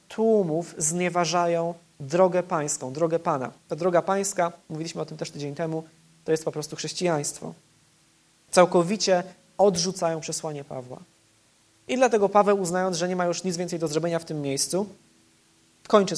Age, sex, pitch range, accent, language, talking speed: 20-39, male, 155-185 Hz, native, Polish, 150 wpm